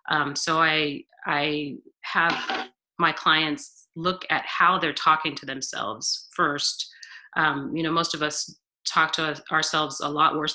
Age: 30-49